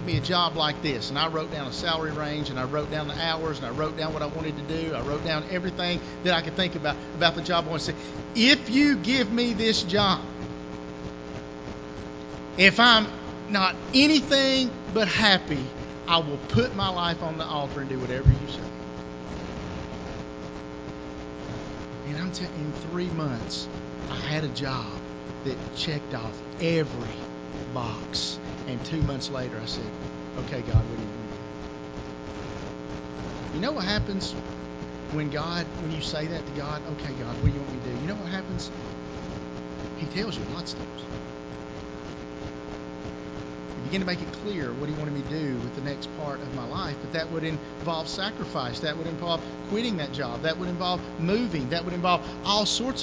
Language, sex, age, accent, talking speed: English, male, 50-69, American, 190 wpm